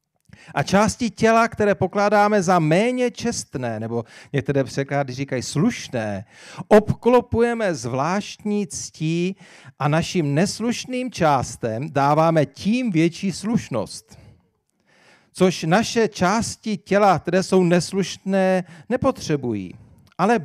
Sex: male